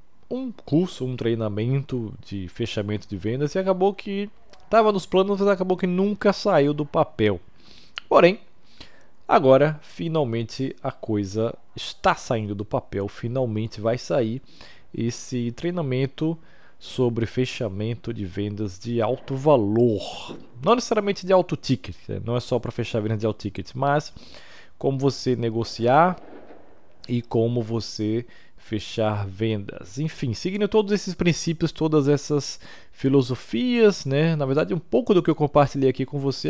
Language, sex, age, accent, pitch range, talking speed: Portuguese, male, 20-39, Brazilian, 115-170 Hz, 140 wpm